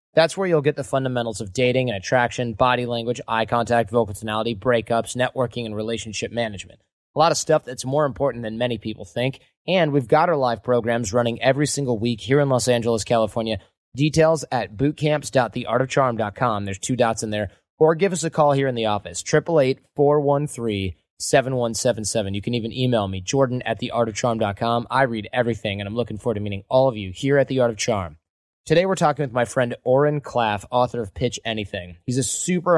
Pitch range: 110-140 Hz